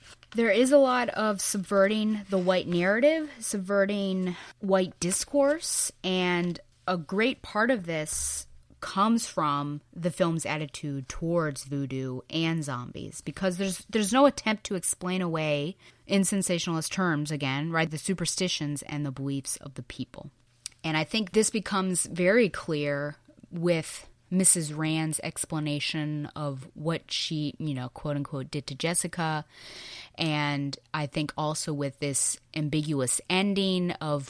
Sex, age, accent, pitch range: female, 20-39, American, 145-185 Hz